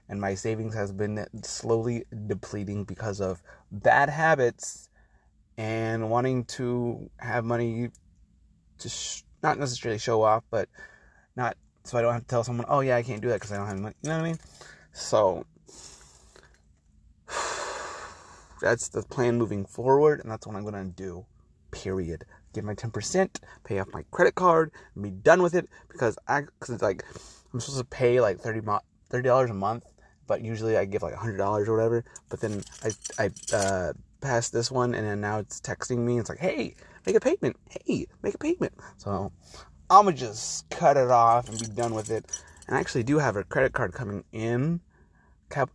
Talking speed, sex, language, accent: 195 wpm, male, English, American